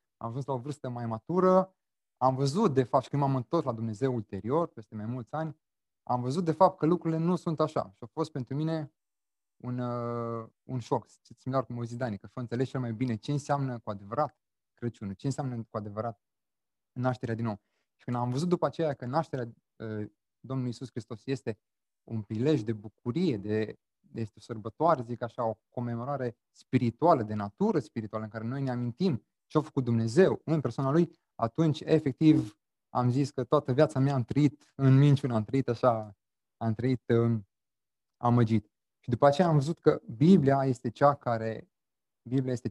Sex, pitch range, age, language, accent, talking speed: male, 115-150 Hz, 20-39, Romanian, native, 185 wpm